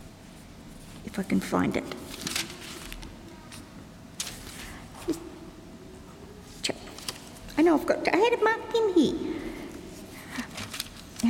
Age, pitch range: 60-79, 215-285 Hz